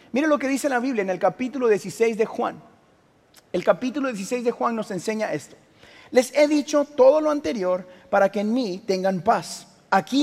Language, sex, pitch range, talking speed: Spanish, male, 185-245 Hz, 195 wpm